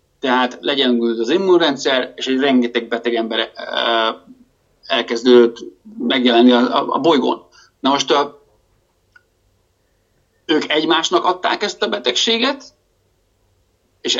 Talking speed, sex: 105 wpm, male